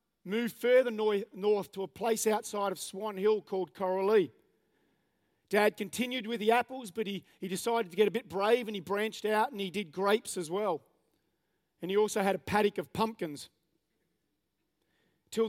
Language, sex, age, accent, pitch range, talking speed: English, male, 40-59, Australian, 180-220 Hz, 175 wpm